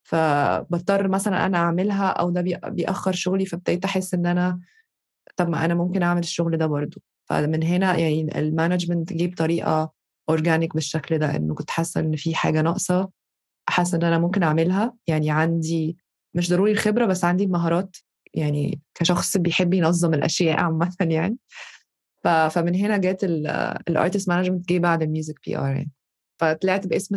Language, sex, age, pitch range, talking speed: Arabic, female, 20-39, 165-185 Hz, 150 wpm